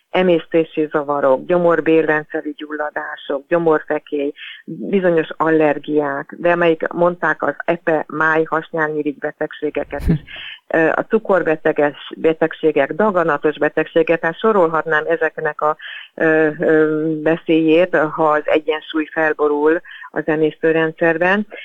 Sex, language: female, Hungarian